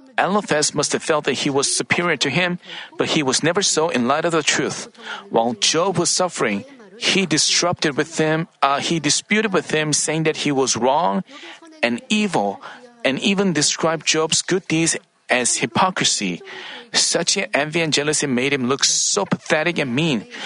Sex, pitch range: male, 150-210 Hz